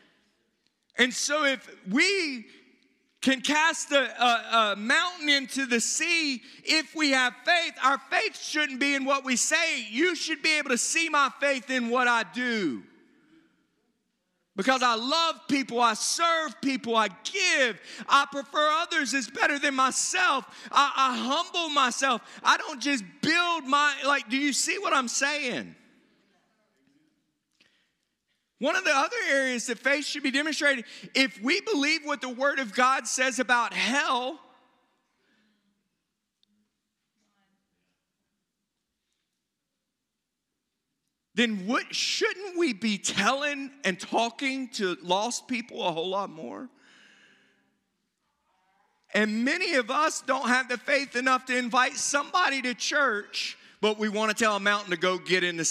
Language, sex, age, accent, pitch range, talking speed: English, male, 30-49, American, 235-295 Hz, 140 wpm